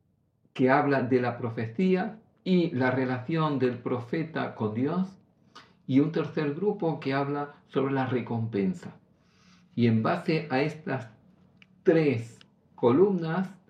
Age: 50-69